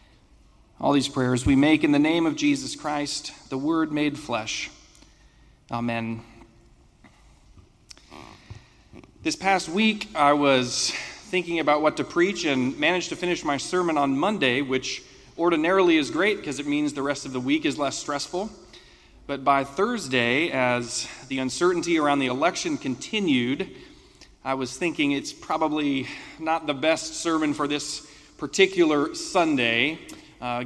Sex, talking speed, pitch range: male, 145 wpm, 130-170 Hz